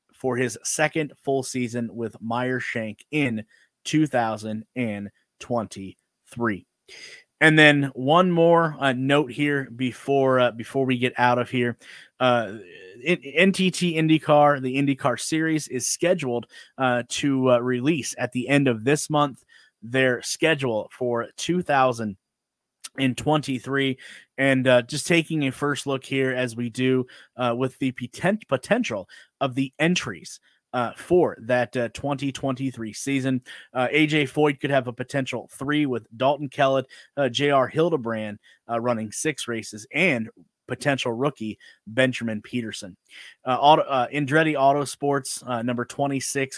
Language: English